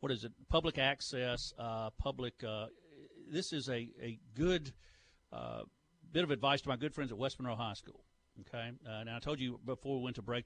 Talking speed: 220 wpm